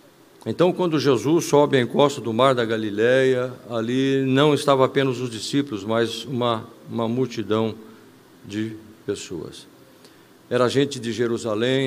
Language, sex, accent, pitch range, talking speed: Portuguese, male, Brazilian, 115-145 Hz, 130 wpm